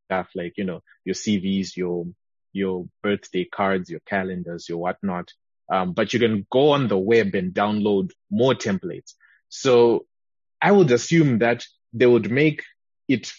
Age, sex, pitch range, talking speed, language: 20-39, male, 100-125 Hz, 155 wpm, English